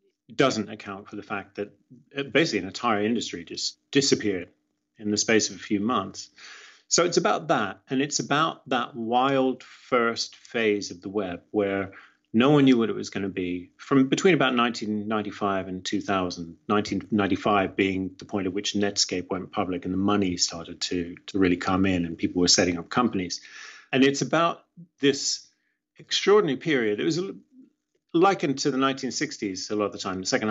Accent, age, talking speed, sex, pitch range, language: British, 30-49, 185 wpm, male, 100-130 Hz, English